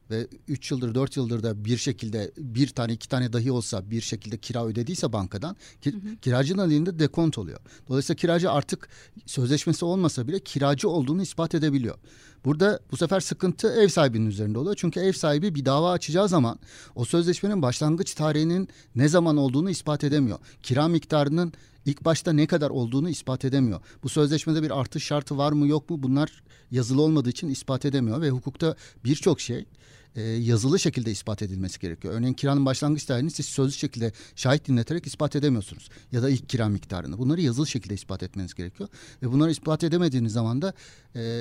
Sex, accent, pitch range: male, native, 120-150 Hz